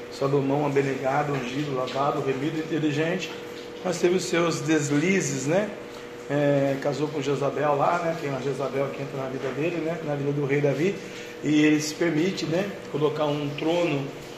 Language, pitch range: Portuguese, 145-170 Hz